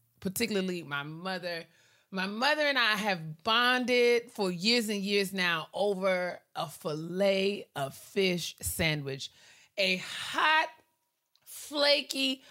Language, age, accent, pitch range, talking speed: English, 30-49, American, 165-225 Hz, 110 wpm